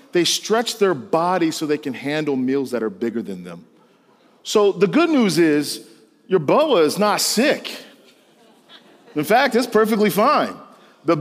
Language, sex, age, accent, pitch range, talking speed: English, male, 40-59, American, 225-290 Hz, 160 wpm